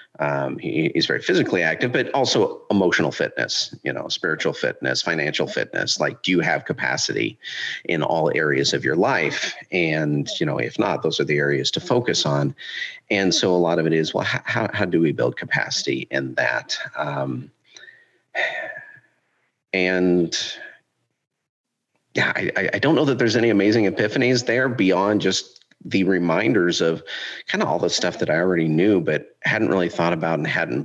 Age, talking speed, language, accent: 40-59, 170 wpm, English, American